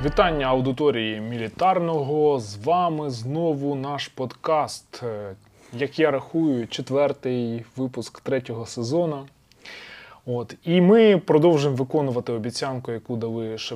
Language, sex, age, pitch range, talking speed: Ukrainian, male, 20-39, 115-145 Hz, 105 wpm